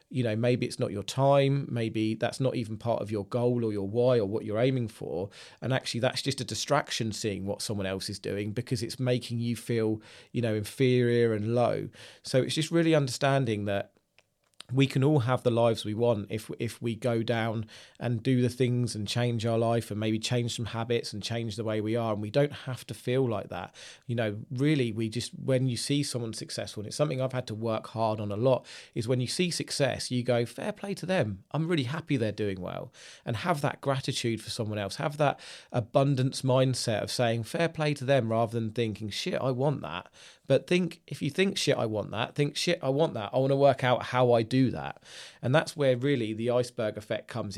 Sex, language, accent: male, English, British